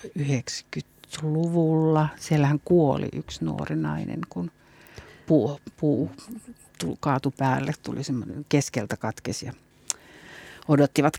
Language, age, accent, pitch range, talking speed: Finnish, 50-69, native, 125-155 Hz, 90 wpm